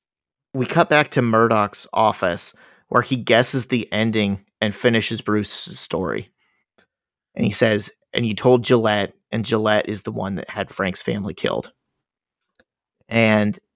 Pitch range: 110-125 Hz